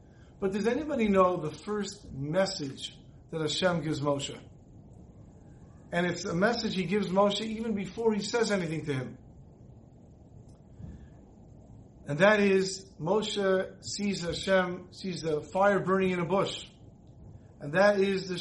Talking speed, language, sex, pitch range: 135 wpm, English, male, 170-210 Hz